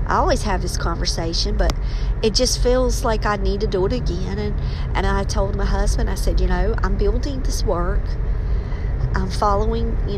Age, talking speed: 40-59, 195 wpm